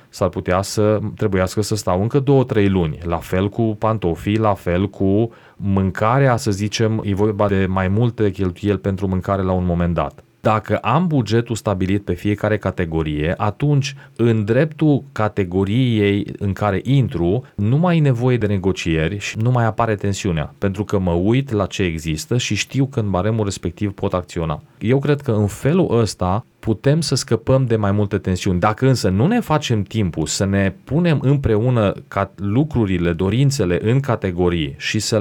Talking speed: 170 wpm